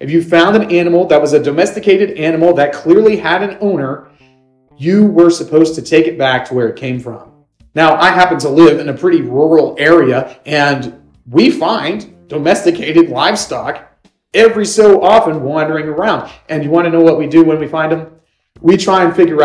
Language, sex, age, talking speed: English, male, 30-49, 195 wpm